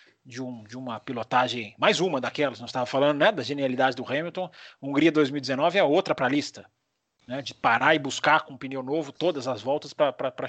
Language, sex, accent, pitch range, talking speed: Portuguese, male, Brazilian, 135-180 Hz, 200 wpm